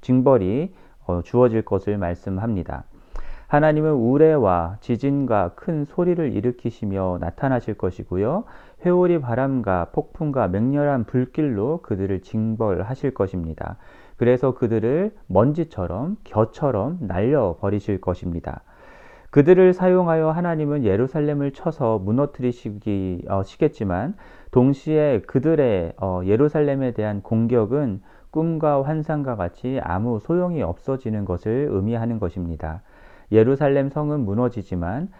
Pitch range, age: 100-150 Hz, 40-59